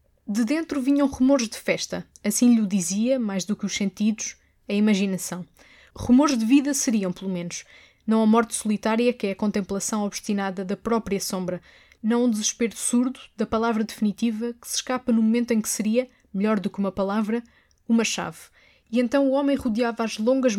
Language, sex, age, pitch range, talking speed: Portuguese, female, 20-39, 205-250 Hz, 185 wpm